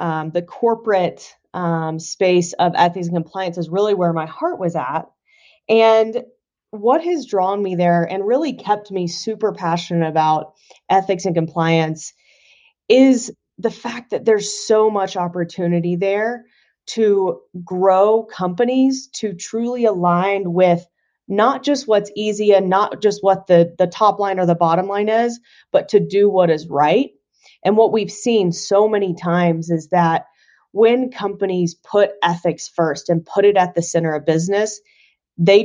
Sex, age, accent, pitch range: female, 30-49, American, 170-220 Hz